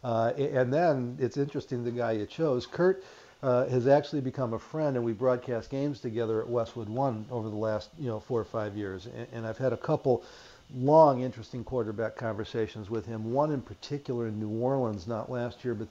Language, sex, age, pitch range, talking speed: English, male, 50-69, 110-135 Hz, 210 wpm